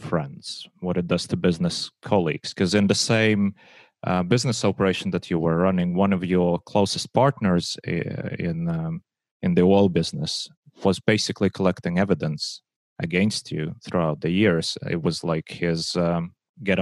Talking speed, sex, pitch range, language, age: 155 wpm, male, 85-110 Hz, English, 30-49